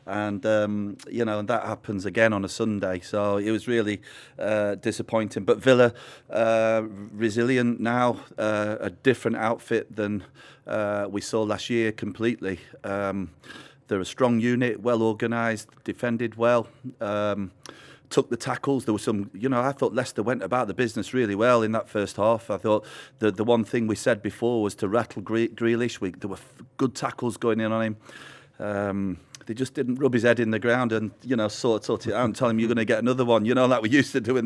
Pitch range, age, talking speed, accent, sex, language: 105-125 Hz, 30-49, 210 wpm, British, male, English